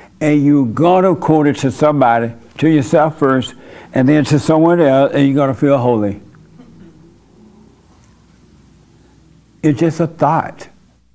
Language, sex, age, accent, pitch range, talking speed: English, male, 60-79, American, 125-160 Hz, 140 wpm